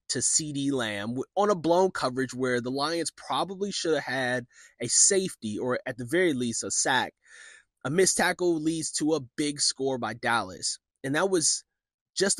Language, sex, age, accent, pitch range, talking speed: English, male, 20-39, American, 125-175 Hz, 180 wpm